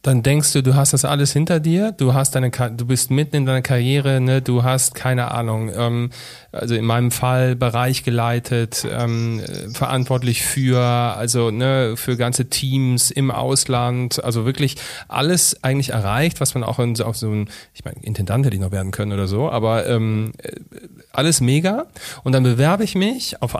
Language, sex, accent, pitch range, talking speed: German, male, German, 125-160 Hz, 180 wpm